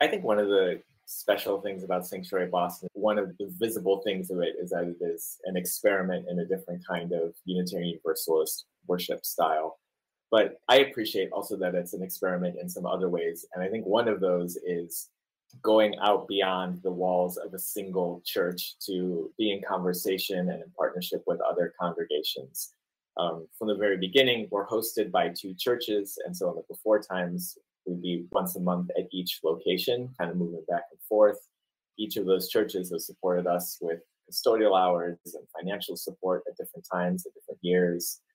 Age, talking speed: 20-39, 185 wpm